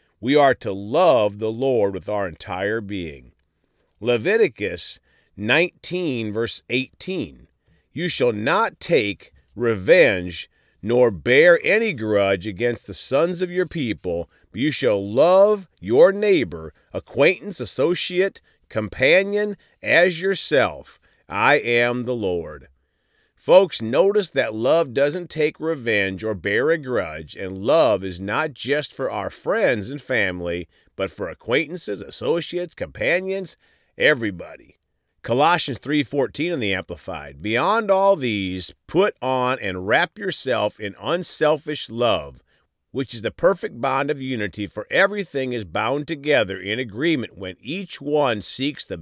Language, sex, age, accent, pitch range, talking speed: English, male, 40-59, American, 100-165 Hz, 130 wpm